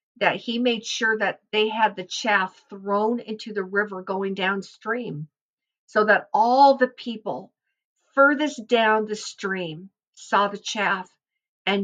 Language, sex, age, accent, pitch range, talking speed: English, female, 50-69, American, 175-215 Hz, 140 wpm